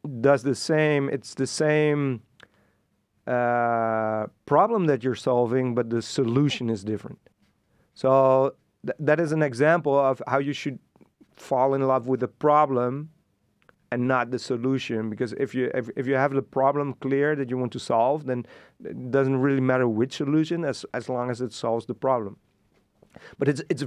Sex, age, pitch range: male, 40-59, 115-140 Hz